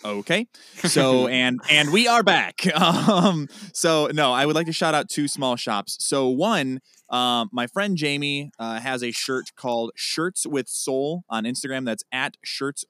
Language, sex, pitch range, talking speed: English, male, 105-130 Hz, 175 wpm